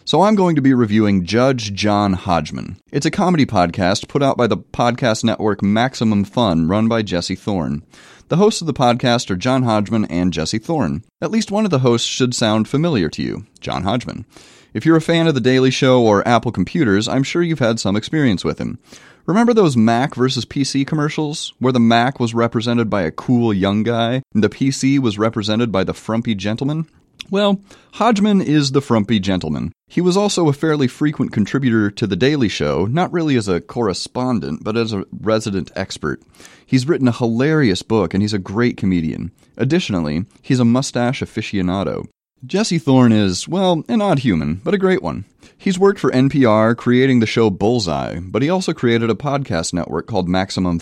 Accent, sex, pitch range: American, male, 105-140 Hz